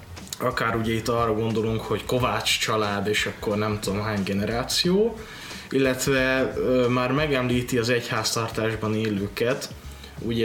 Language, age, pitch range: Hungarian, 20-39, 110-130 Hz